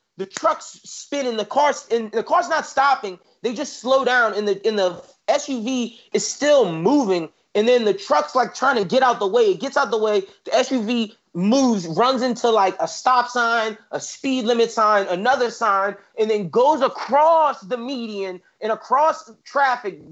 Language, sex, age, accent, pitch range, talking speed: English, male, 30-49, American, 200-250 Hz, 185 wpm